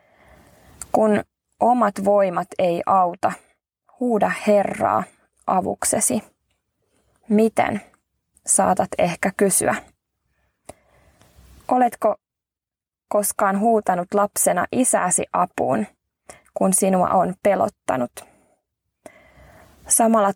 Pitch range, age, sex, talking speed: 190-220 Hz, 20-39, female, 70 wpm